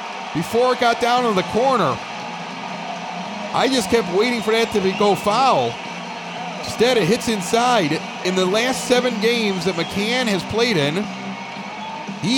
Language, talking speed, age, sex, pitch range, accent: English, 155 wpm, 40-59, male, 165-220 Hz, American